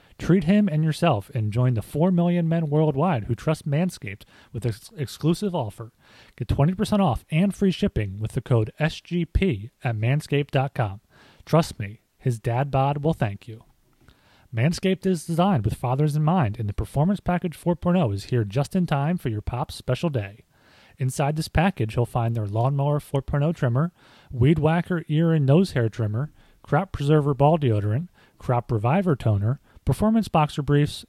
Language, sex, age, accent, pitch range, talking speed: English, male, 30-49, American, 115-165 Hz, 170 wpm